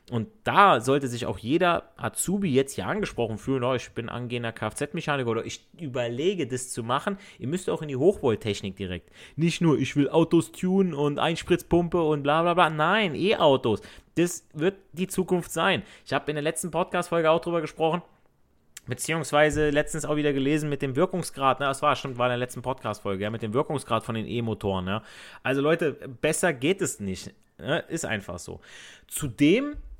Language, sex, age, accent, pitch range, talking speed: German, male, 30-49, German, 120-170 Hz, 175 wpm